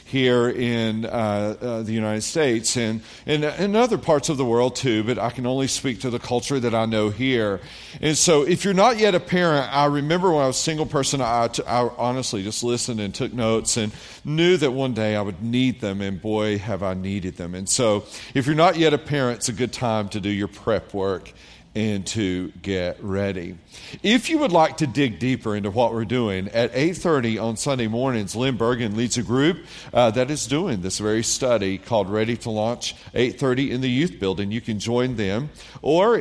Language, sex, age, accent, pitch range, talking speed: English, male, 40-59, American, 105-135 Hz, 215 wpm